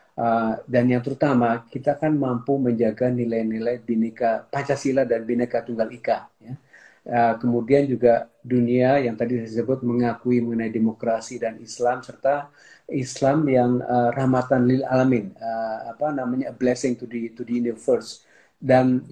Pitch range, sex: 120-135 Hz, male